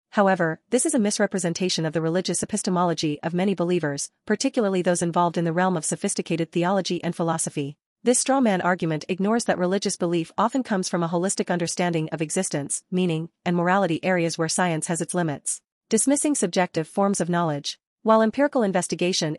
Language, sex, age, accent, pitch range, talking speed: English, female, 40-59, American, 165-200 Hz, 170 wpm